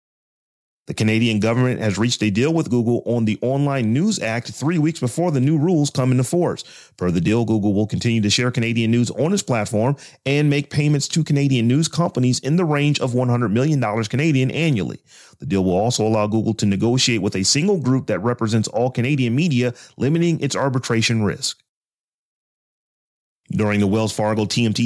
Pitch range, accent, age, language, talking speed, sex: 115-150 Hz, American, 30-49, English, 185 wpm, male